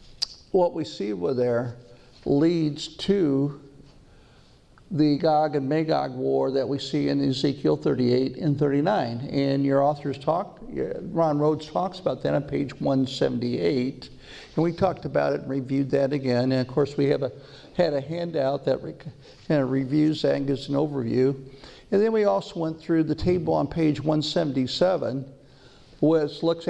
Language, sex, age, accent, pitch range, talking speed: English, male, 50-69, American, 140-160 Hz, 165 wpm